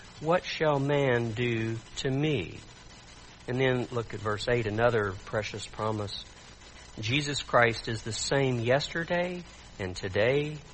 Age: 50-69